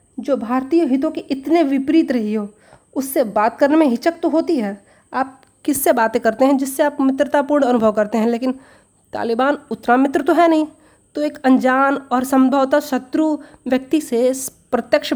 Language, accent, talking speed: Hindi, native, 170 wpm